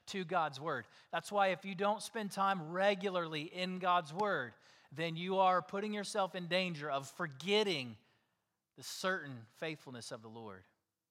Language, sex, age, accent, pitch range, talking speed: English, male, 30-49, American, 135-185 Hz, 155 wpm